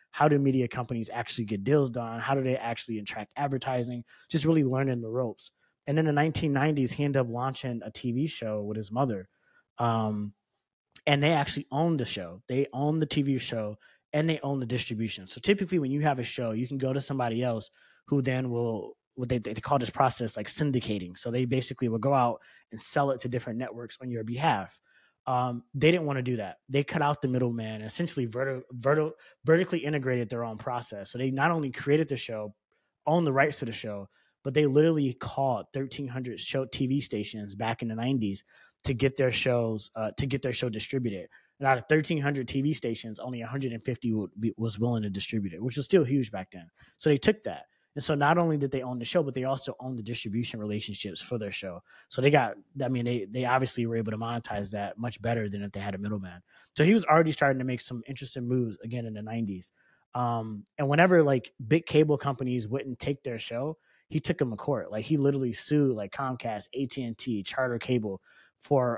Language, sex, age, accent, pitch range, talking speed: English, male, 20-39, American, 115-140 Hz, 215 wpm